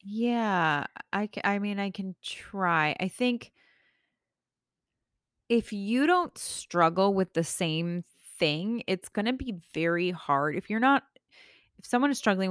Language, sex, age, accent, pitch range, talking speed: English, female, 20-39, American, 160-215 Hz, 145 wpm